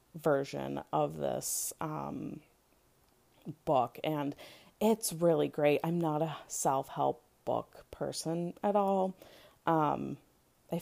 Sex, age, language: female, 30-49, English